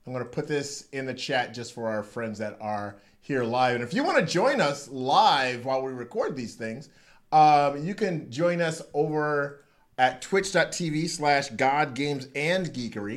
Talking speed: 165 wpm